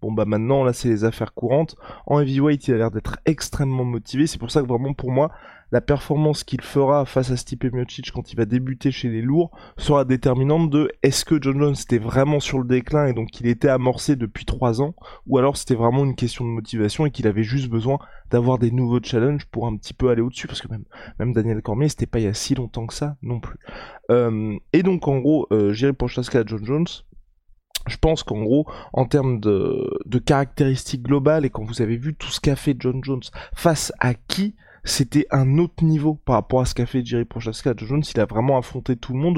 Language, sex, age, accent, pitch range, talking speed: French, male, 20-39, French, 115-145 Hz, 235 wpm